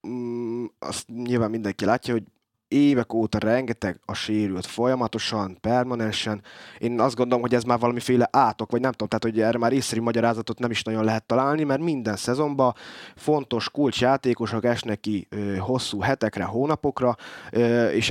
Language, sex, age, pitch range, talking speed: Hungarian, male, 20-39, 110-135 Hz, 150 wpm